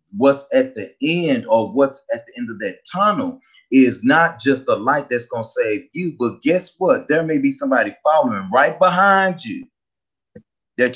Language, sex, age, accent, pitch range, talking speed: English, male, 30-49, American, 125-185 Hz, 180 wpm